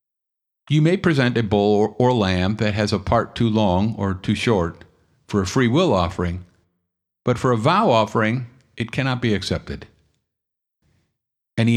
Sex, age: male, 50-69